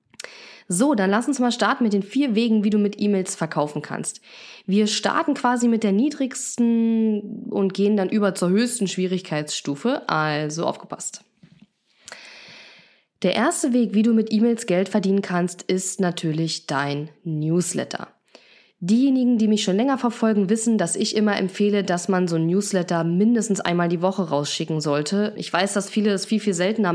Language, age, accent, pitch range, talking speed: German, 20-39, German, 175-220 Hz, 165 wpm